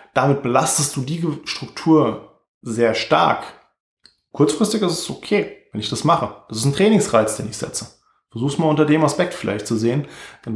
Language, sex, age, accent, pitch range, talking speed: German, male, 20-39, German, 120-155 Hz, 175 wpm